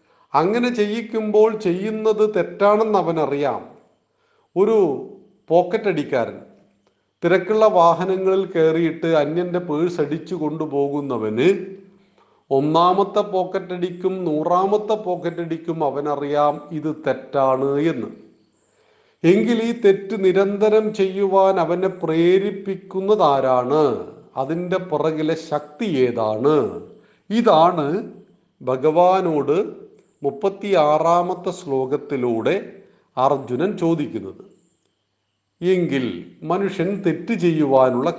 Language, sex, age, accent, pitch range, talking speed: Malayalam, male, 40-59, native, 145-195 Hz, 65 wpm